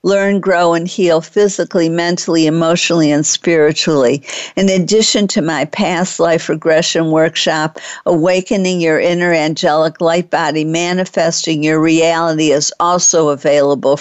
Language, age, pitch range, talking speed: English, 50-69, 155-185 Hz, 125 wpm